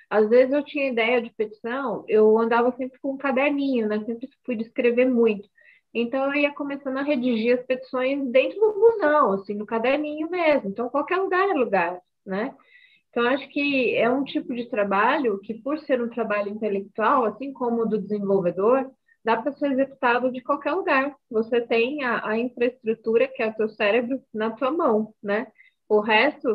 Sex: female